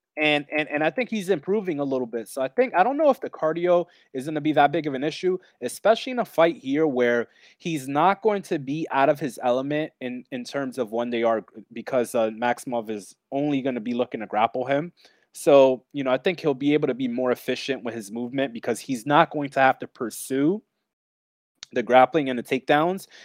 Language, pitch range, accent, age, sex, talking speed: English, 120-160 Hz, American, 20-39, male, 230 wpm